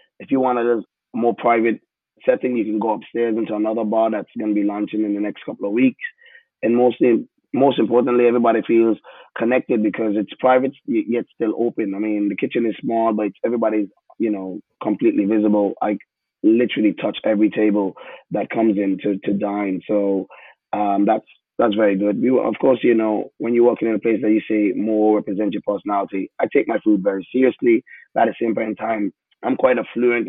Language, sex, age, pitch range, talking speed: English, male, 20-39, 105-115 Hz, 200 wpm